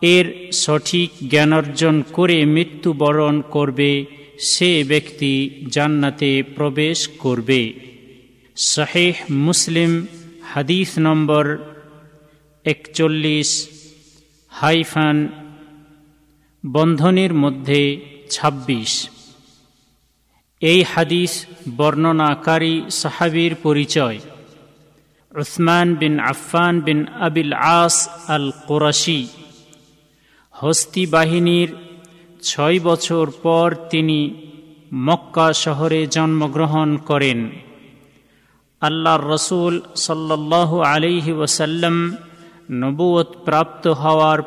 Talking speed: 70 wpm